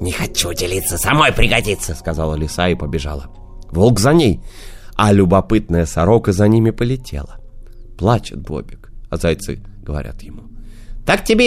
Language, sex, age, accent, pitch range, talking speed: Russian, male, 30-49, native, 85-115 Hz, 135 wpm